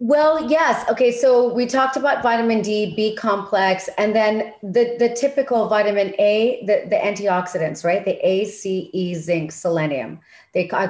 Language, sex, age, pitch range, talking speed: English, female, 40-59, 165-215 Hz, 165 wpm